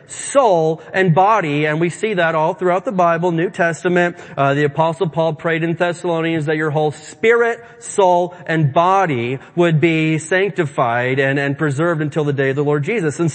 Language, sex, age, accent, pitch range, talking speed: English, male, 30-49, American, 160-230 Hz, 185 wpm